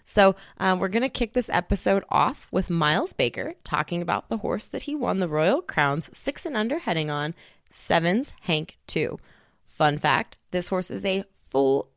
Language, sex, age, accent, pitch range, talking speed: English, female, 20-39, American, 145-190 Hz, 185 wpm